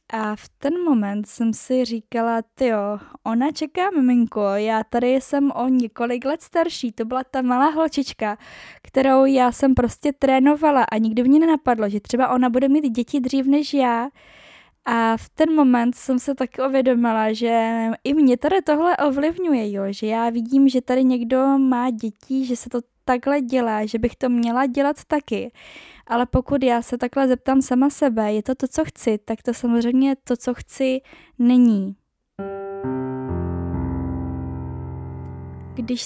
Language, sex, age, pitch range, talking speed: Czech, female, 10-29, 225-270 Hz, 160 wpm